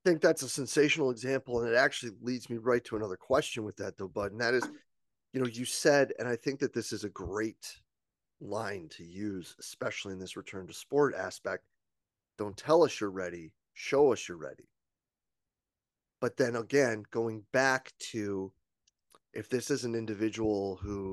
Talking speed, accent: 180 wpm, American